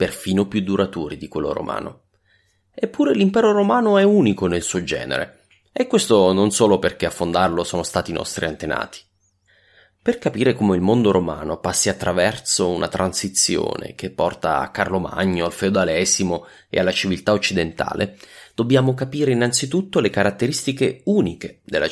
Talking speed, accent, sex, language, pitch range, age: 145 wpm, Italian, male, English, 95-120 Hz, 30-49